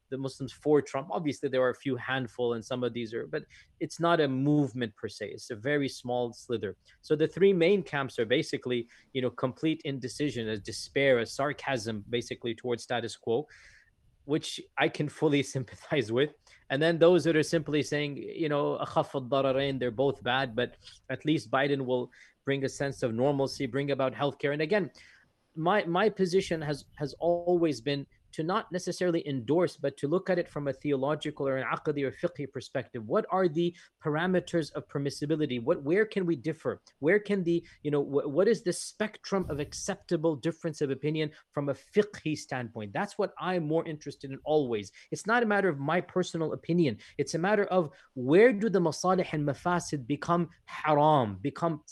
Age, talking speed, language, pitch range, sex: 20-39, 185 wpm, English, 135-170 Hz, male